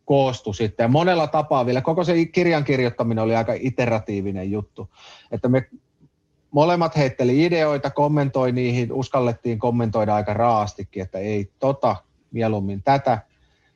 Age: 30-49